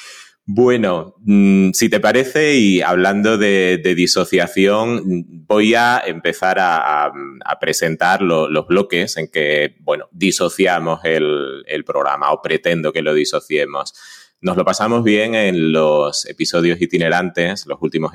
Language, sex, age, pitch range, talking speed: Spanish, male, 30-49, 85-105 Hz, 135 wpm